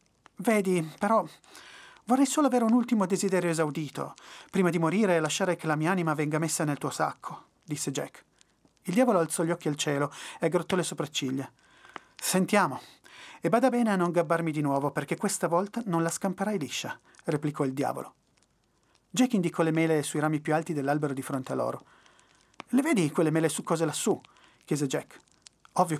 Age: 30-49